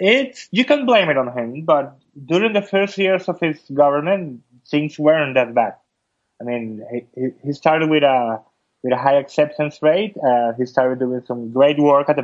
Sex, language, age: male, English, 20-39